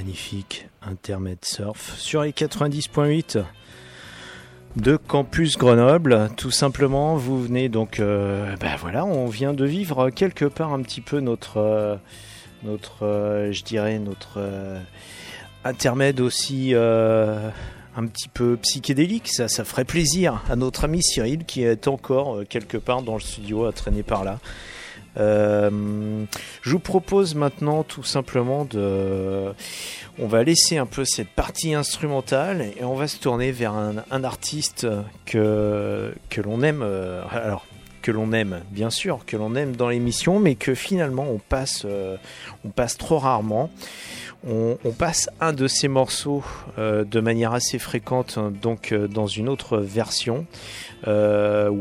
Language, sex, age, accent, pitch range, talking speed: French, male, 30-49, French, 105-135 Hz, 155 wpm